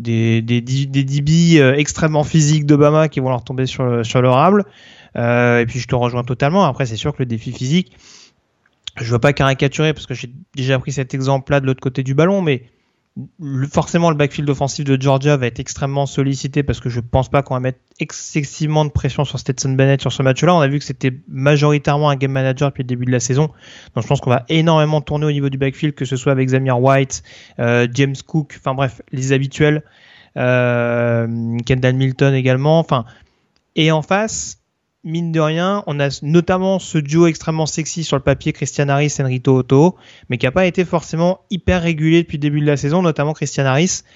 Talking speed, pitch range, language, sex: 215 wpm, 130-155 Hz, French, male